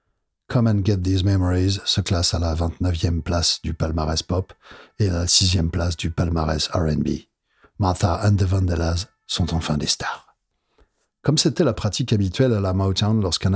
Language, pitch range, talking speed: English, 90-110 Hz, 175 wpm